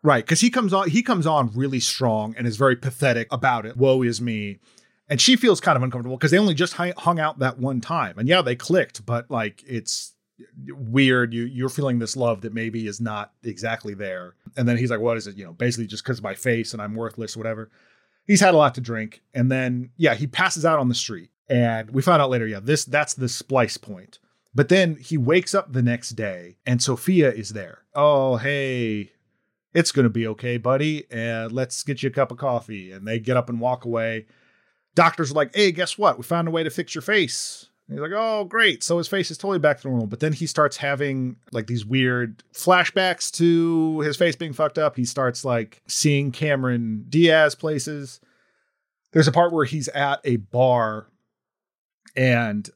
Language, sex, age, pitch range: English, male, 30-49, 115-150 Hz